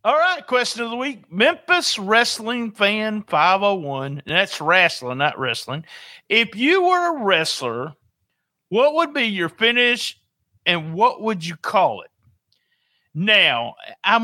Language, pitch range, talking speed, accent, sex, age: English, 165-240 Hz, 140 wpm, American, male, 50-69